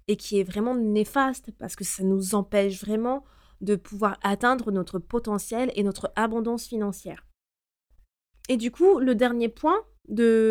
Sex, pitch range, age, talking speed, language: female, 200-255 Hz, 20-39, 155 wpm, French